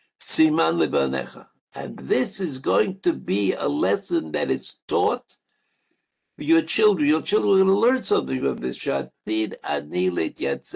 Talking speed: 115 wpm